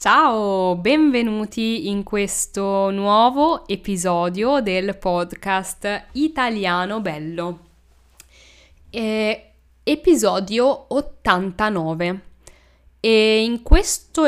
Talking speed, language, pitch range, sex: 65 wpm, Italian, 180-250 Hz, female